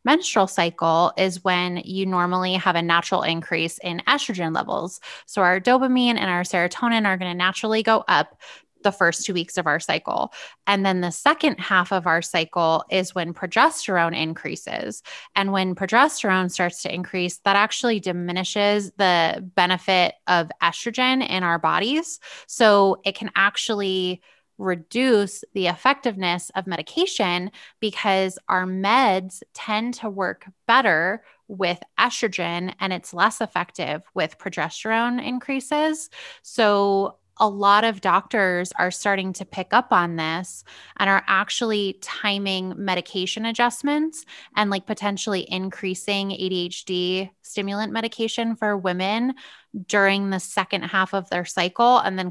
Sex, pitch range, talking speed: female, 180-220 Hz, 140 wpm